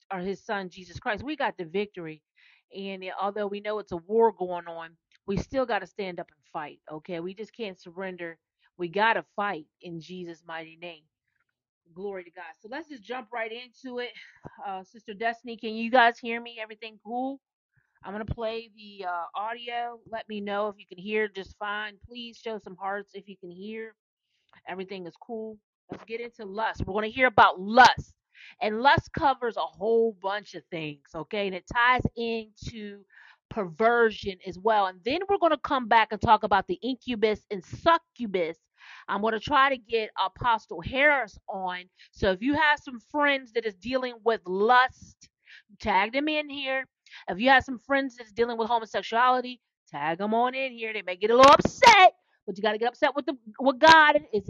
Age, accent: 40-59, American